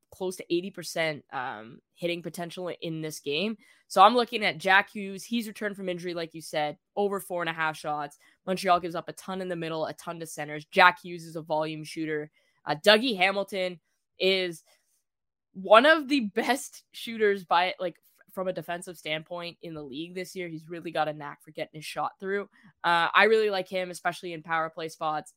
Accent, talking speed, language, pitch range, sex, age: American, 205 wpm, English, 155-190 Hz, female, 10-29